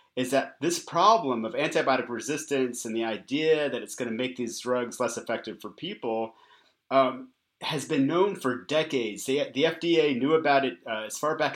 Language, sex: English, male